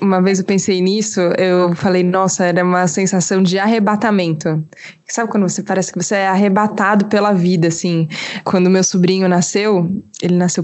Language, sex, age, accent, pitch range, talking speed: Portuguese, female, 20-39, Brazilian, 185-235 Hz, 170 wpm